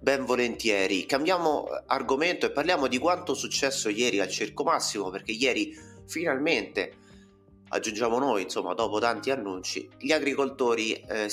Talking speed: 140 wpm